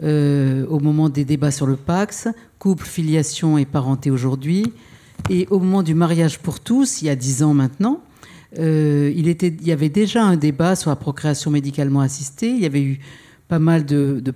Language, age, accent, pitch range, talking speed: French, 50-69, French, 145-175 Hz, 195 wpm